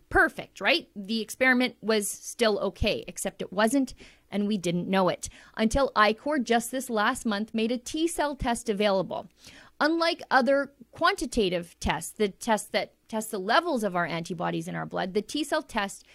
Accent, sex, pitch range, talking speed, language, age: American, female, 200-260 Hz, 165 wpm, English, 30-49